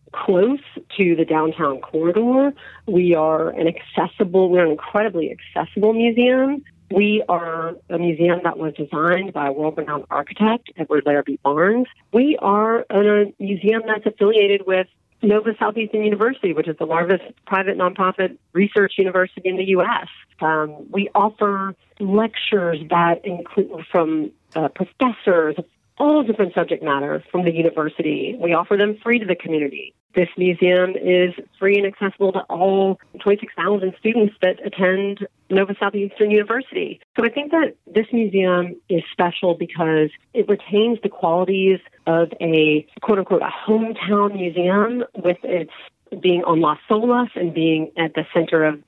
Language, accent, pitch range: English, American, 170-215 Hz